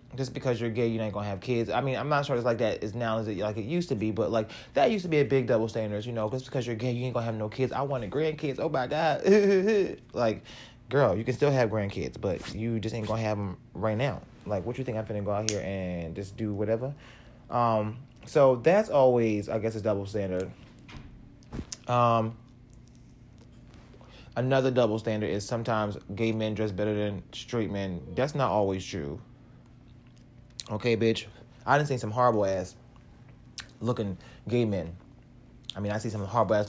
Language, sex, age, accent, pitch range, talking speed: English, male, 20-39, American, 105-125 Hz, 210 wpm